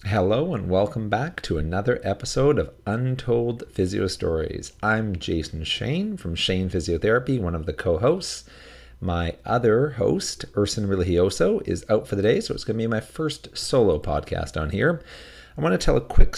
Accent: American